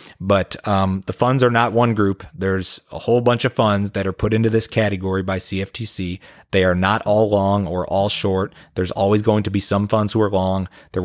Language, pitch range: English, 95-110 Hz